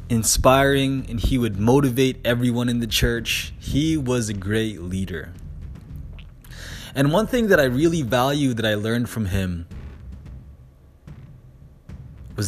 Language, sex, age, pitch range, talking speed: English, male, 20-39, 85-120 Hz, 130 wpm